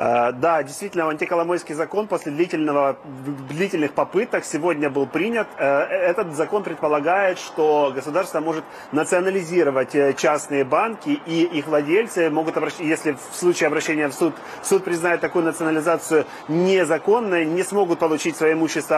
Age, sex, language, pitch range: 30-49, male, Russian, 150-175 Hz